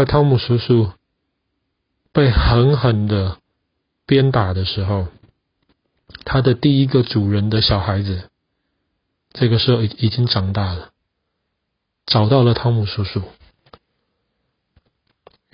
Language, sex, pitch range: Chinese, male, 100-120 Hz